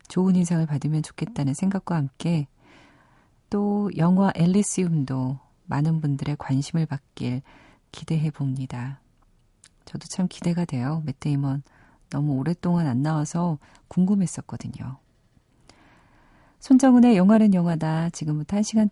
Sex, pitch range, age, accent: female, 140-185 Hz, 40-59, native